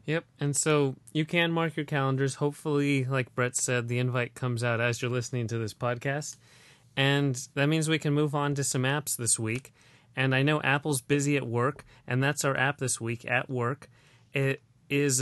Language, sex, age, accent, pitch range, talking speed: English, male, 30-49, American, 120-140 Hz, 200 wpm